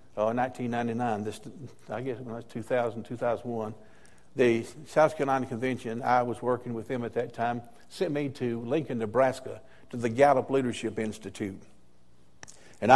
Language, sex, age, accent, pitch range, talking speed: English, male, 60-79, American, 120-150 Hz, 160 wpm